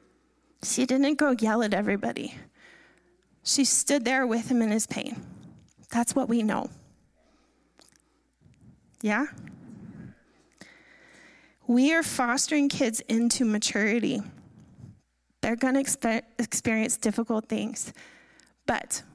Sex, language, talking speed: female, English, 100 wpm